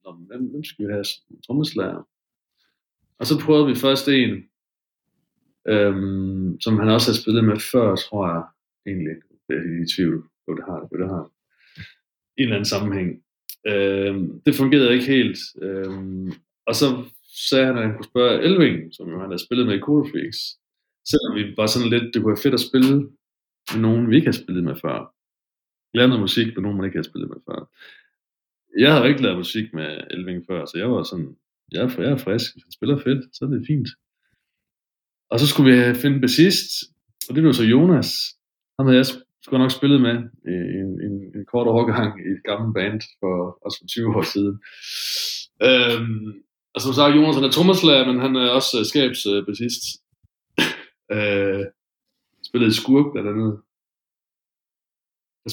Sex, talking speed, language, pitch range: male, 175 wpm, Danish, 100-130 Hz